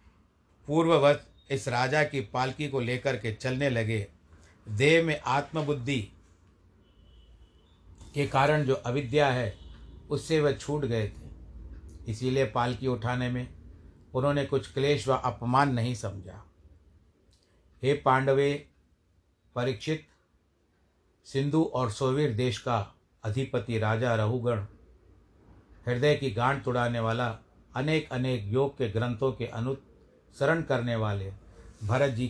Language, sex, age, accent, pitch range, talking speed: Hindi, male, 60-79, native, 95-130 Hz, 115 wpm